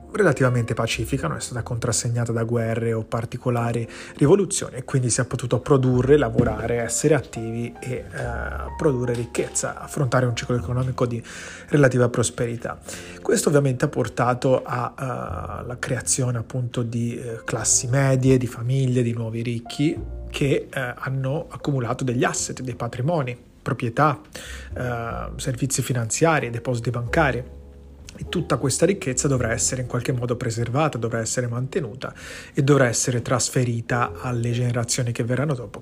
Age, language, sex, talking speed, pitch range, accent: 30-49, Italian, male, 130 wpm, 115-135 Hz, native